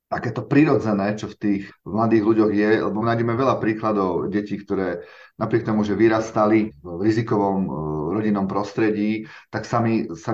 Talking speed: 155 wpm